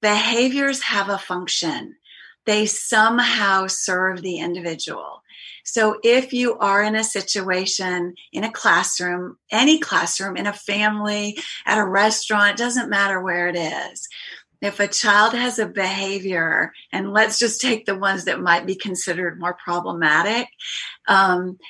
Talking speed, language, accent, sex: 140 wpm, English, American, female